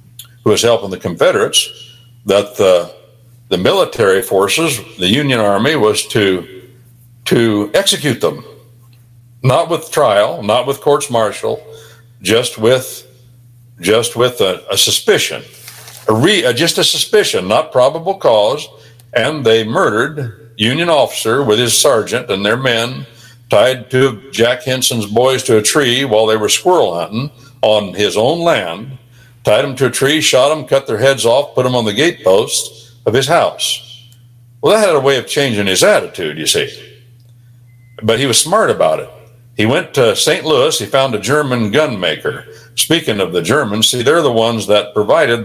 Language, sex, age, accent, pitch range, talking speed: English, male, 60-79, American, 110-130 Hz, 165 wpm